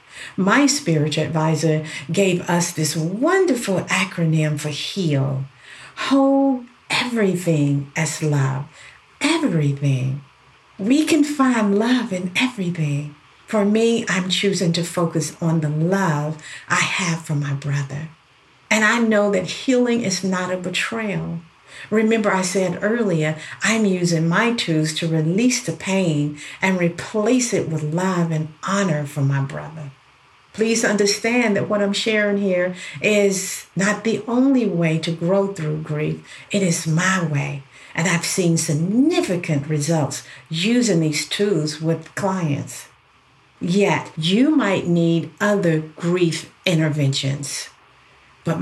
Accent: American